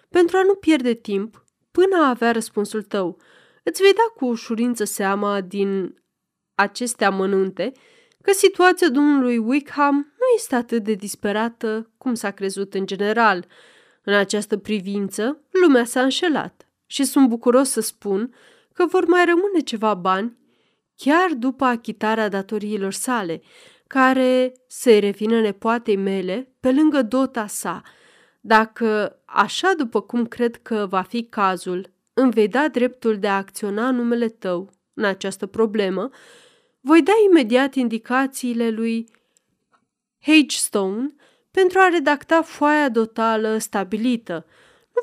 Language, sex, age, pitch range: Romanian, female, 20-39, 205-285 Hz